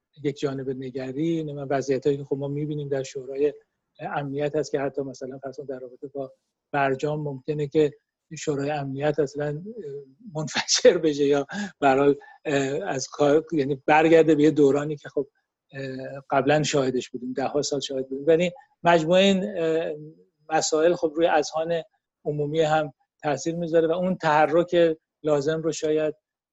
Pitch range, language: 135-160 Hz, Persian